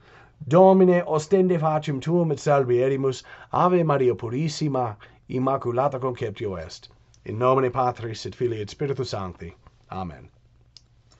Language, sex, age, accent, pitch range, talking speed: English, male, 40-59, American, 120-175 Hz, 120 wpm